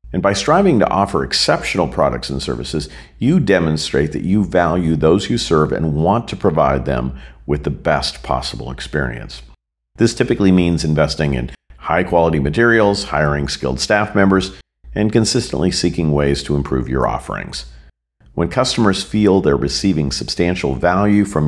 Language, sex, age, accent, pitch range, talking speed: English, male, 50-69, American, 65-90 Hz, 150 wpm